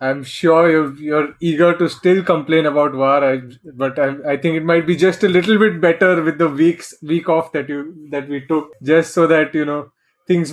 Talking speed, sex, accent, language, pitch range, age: 205 wpm, male, Indian, English, 145-170 Hz, 20-39